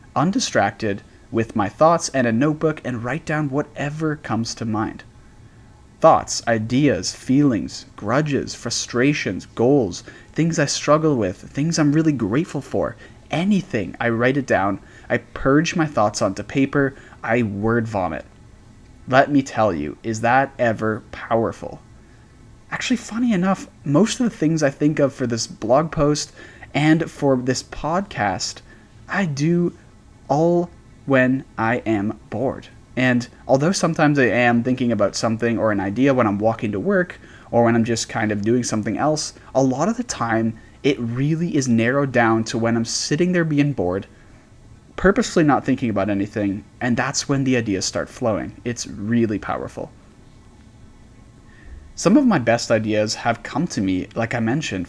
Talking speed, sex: 160 wpm, male